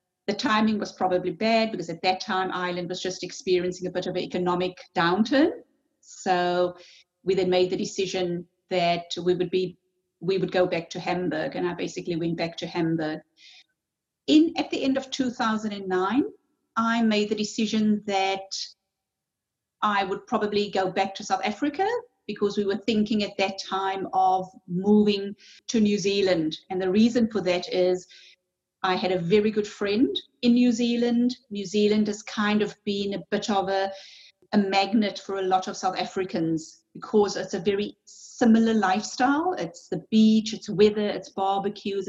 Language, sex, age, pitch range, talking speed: English, female, 30-49, 185-215 Hz, 170 wpm